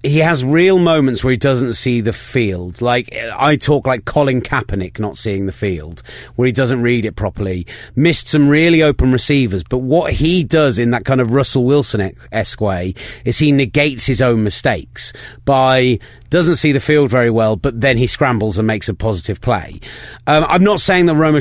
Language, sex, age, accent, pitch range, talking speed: English, male, 30-49, British, 115-150 Hz, 195 wpm